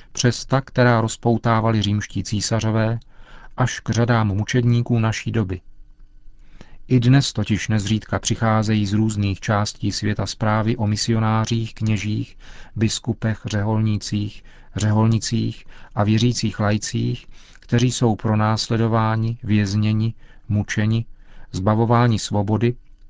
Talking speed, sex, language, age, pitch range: 100 wpm, male, Czech, 40-59, 105-125 Hz